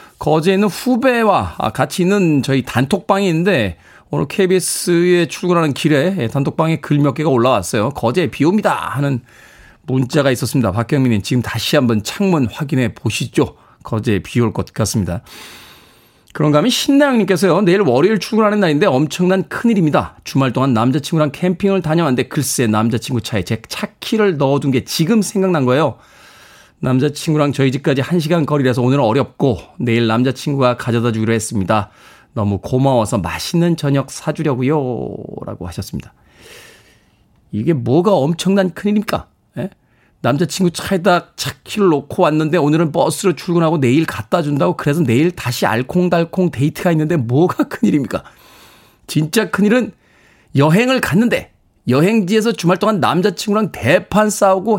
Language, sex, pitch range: Korean, male, 130-185 Hz